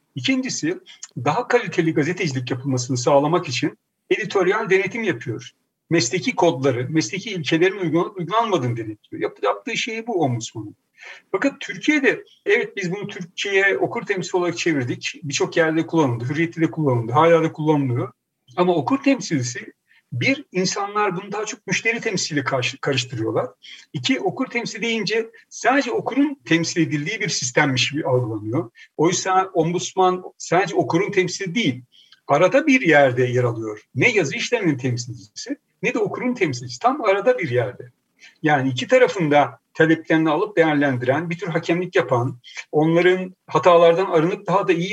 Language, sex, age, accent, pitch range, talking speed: Turkish, male, 60-79, native, 140-200 Hz, 135 wpm